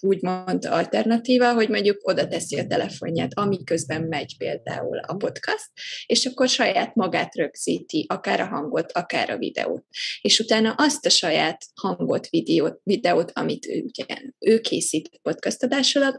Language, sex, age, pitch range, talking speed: Hungarian, female, 20-39, 215-260 Hz, 135 wpm